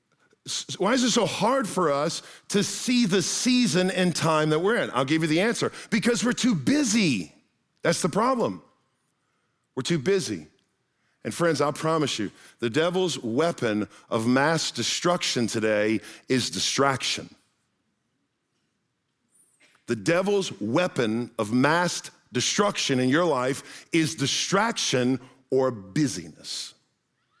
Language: English